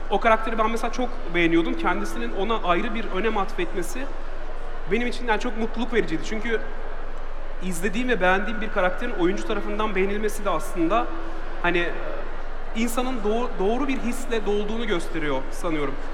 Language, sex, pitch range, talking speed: Turkish, male, 190-240 Hz, 140 wpm